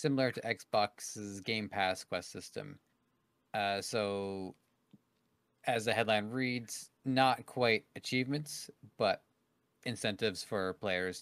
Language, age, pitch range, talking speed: English, 30-49, 100-130 Hz, 105 wpm